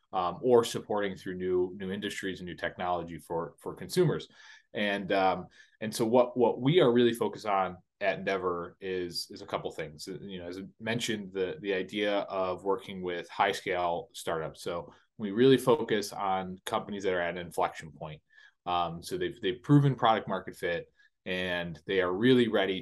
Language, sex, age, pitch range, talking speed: English, male, 30-49, 90-120 Hz, 185 wpm